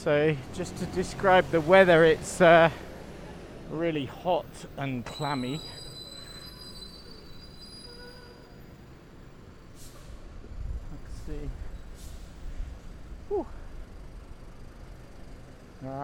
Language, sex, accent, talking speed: English, male, British, 55 wpm